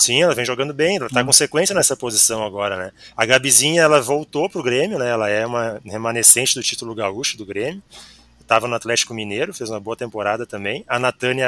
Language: Portuguese